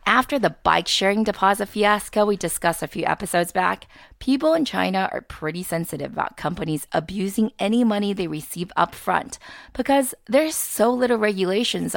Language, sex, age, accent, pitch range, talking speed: English, female, 30-49, American, 175-255 Hz, 160 wpm